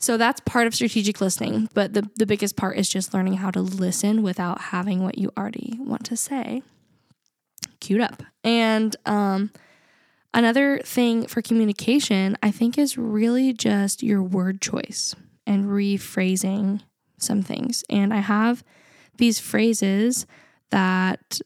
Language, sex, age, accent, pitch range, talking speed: English, female, 10-29, American, 195-235 Hz, 145 wpm